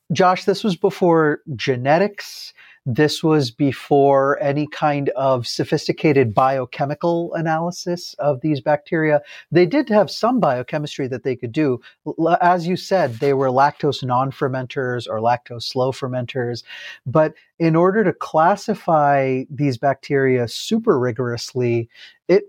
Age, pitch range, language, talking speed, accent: 30-49, 130-160 Hz, English, 125 wpm, American